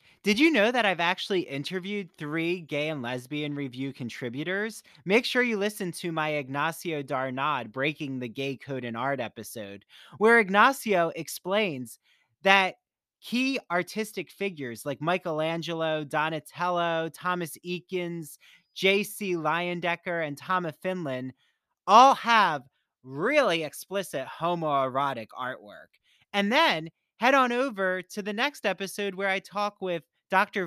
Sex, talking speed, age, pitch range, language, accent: male, 125 wpm, 30-49, 150-200 Hz, English, American